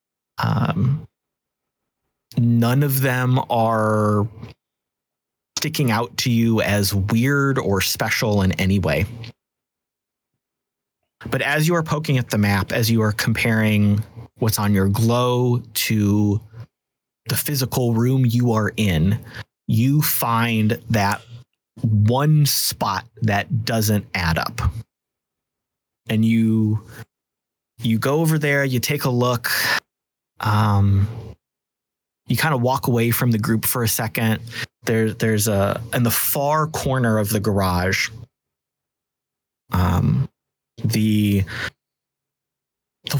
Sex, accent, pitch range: male, American, 105-125 Hz